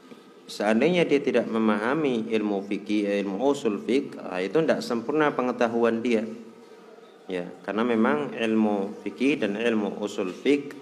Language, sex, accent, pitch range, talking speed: Indonesian, male, native, 100-125 Hz, 130 wpm